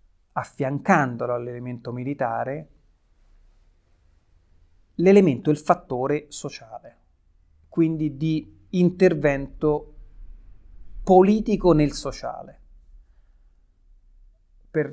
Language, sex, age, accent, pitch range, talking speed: Italian, male, 30-49, native, 115-160 Hz, 55 wpm